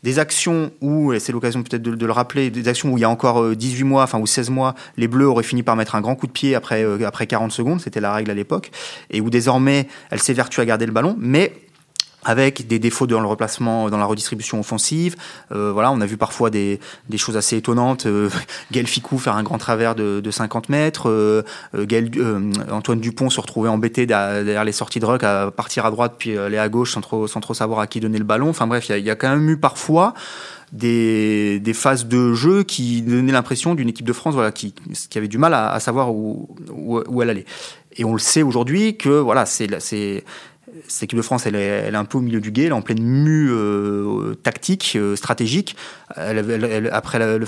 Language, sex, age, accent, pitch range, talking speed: French, male, 20-39, French, 110-135 Hz, 245 wpm